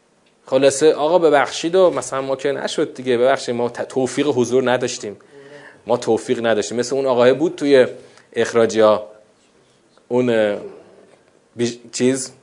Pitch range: 120-160 Hz